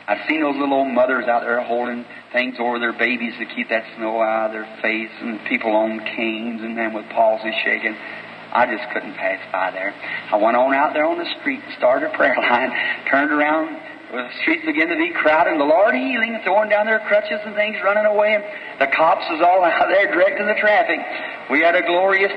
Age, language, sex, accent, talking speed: 40-59, English, male, American, 225 wpm